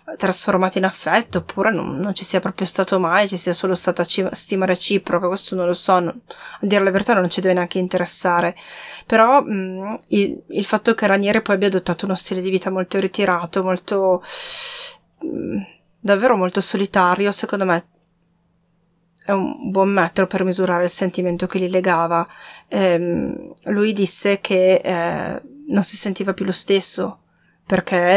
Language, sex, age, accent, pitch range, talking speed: Italian, female, 20-39, native, 180-200 Hz, 165 wpm